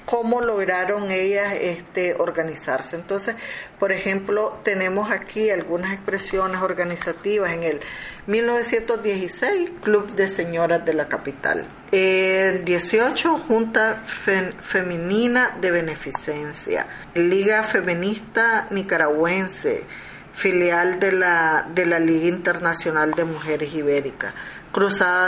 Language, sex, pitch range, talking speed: Spanish, female, 170-210 Hz, 100 wpm